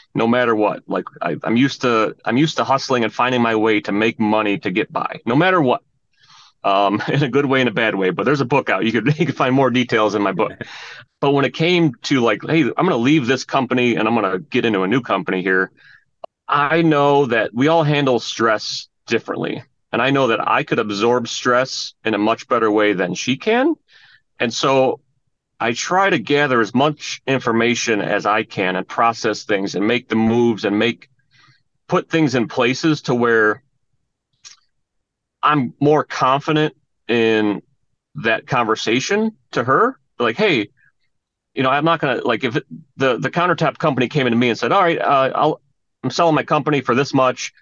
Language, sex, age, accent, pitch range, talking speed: English, male, 30-49, American, 115-145 Hz, 205 wpm